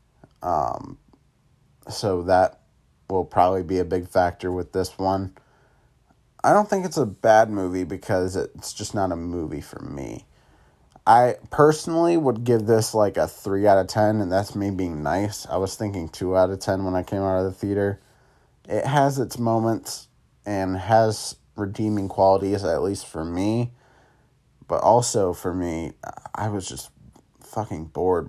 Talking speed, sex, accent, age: 165 wpm, male, American, 30-49